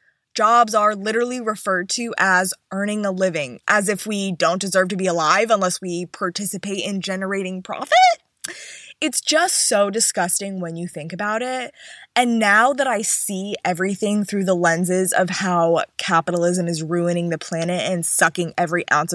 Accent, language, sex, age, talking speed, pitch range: American, English, female, 20-39, 165 wpm, 175-235 Hz